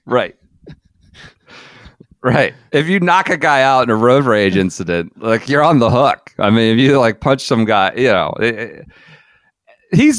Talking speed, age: 185 wpm, 40-59